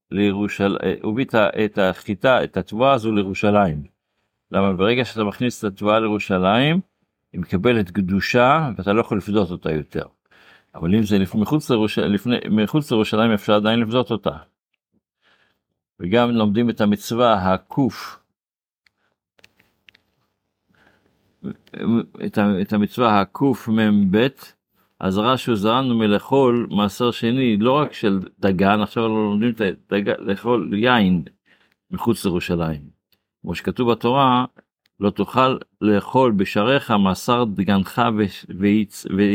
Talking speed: 115 wpm